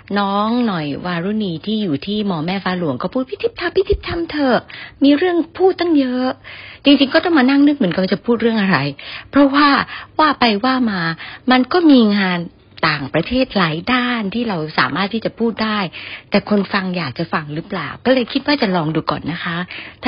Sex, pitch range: female, 160-220 Hz